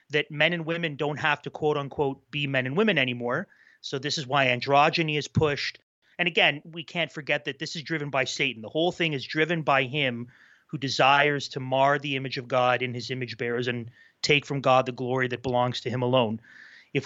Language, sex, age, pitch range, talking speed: English, male, 30-49, 130-155 Hz, 220 wpm